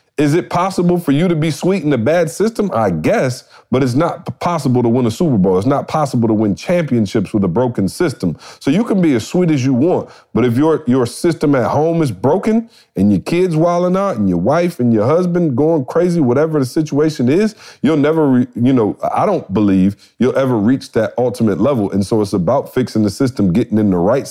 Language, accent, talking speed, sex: English, American, 225 wpm, male